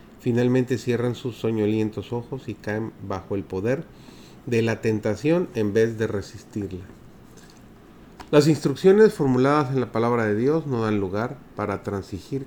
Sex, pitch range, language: male, 100-130 Hz, Spanish